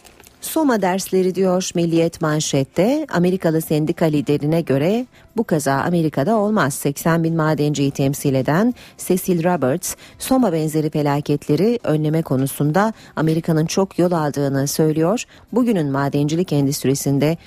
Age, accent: 40-59, native